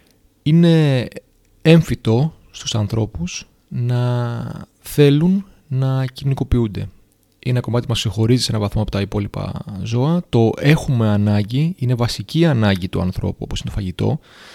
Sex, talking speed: male, 130 wpm